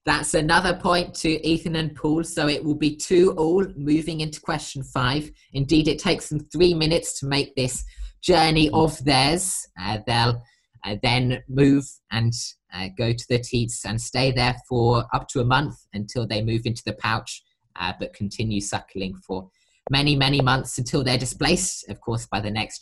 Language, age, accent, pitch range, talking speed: English, 20-39, British, 115-160 Hz, 185 wpm